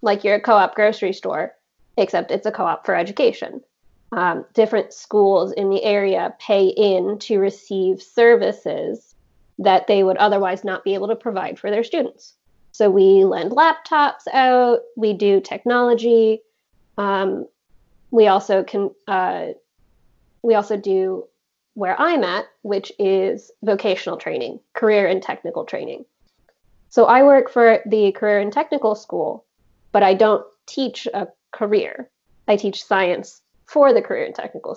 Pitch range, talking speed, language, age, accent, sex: 195-235 Hz, 145 wpm, English, 20-39, American, female